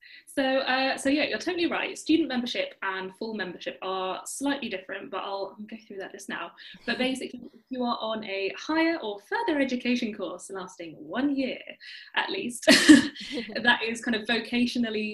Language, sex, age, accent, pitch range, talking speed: English, female, 10-29, British, 210-280 Hz, 175 wpm